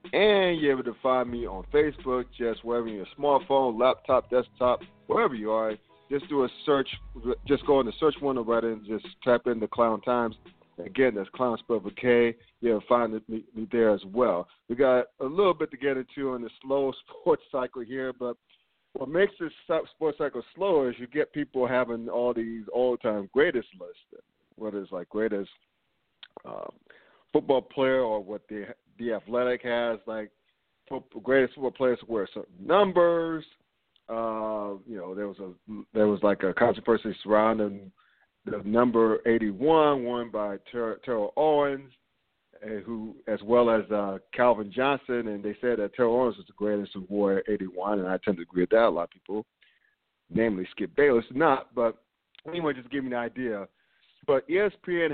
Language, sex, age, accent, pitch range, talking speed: English, male, 50-69, American, 105-135 Hz, 180 wpm